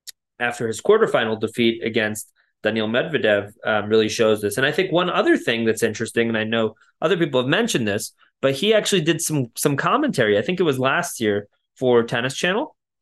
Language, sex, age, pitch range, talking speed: English, male, 20-39, 115-135 Hz, 200 wpm